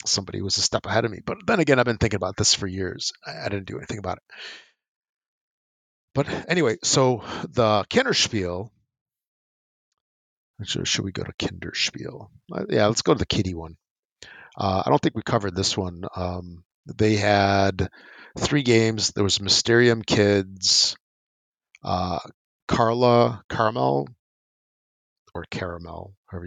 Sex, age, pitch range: male, 50-69, 90-105 Hz